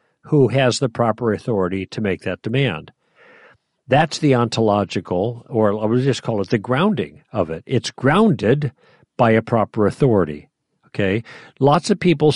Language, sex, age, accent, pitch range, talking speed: English, male, 50-69, American, 110-145 Hz, 155 wpm